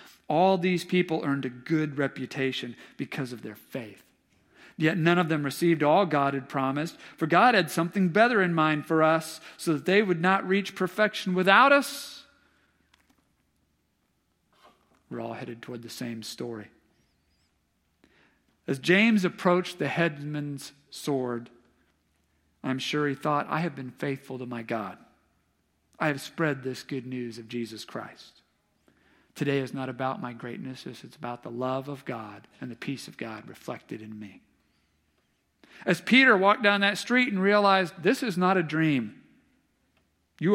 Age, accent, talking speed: 50-69, American, 155 wpm